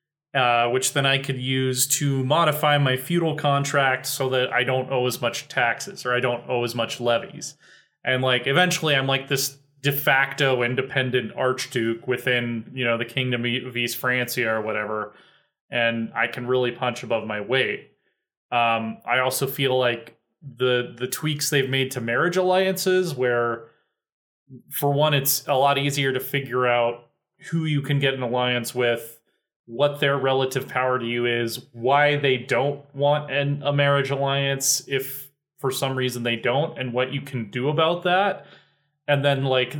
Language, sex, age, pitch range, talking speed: English, male, 20-39, 125-145 Hz, 170 wpm